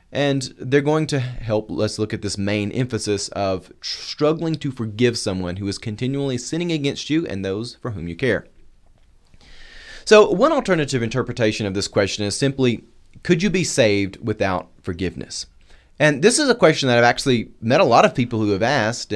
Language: English